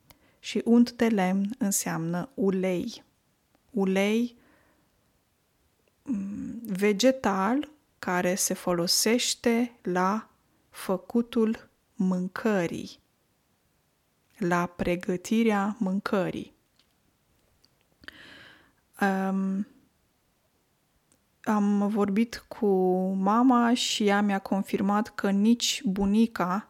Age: 20-39